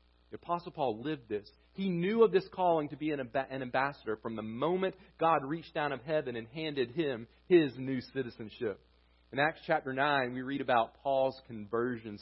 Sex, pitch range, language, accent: male, 115-165 Hz, English, American